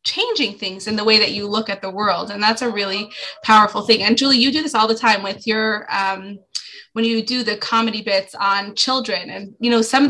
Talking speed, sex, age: 245 wpm, female, 20-39